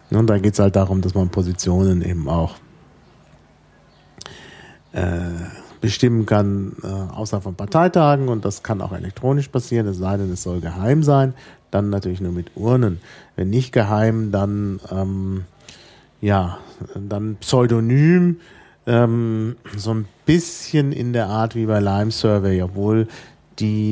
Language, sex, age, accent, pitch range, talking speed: German, male, 40-59, German, 100-125 Hz, 140 wpm